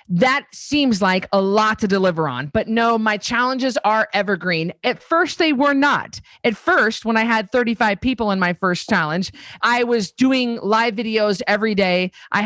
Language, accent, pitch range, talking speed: English, American, 205-260 Hz, 185 wpm